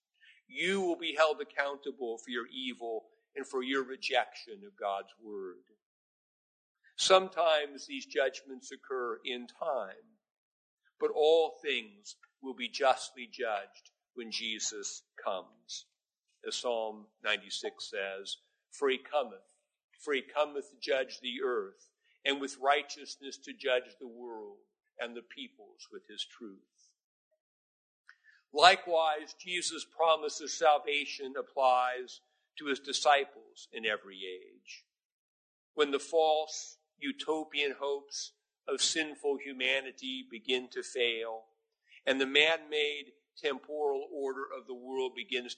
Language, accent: English, American